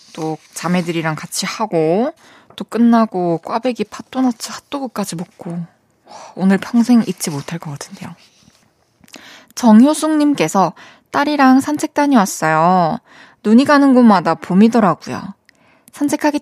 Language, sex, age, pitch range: Korean, female, 20-39, 175-265 Hz